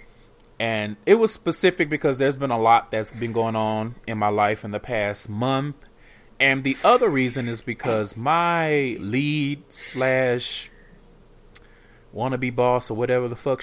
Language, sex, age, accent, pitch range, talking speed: English, male, 20-39, American, 100-130 Hz, 155 wpm